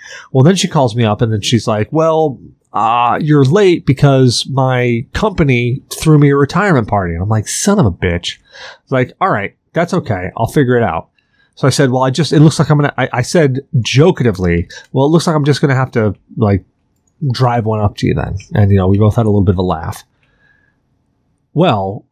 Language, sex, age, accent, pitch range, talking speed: English, male, 30-49, American, 105-145 Hz, 225 wpm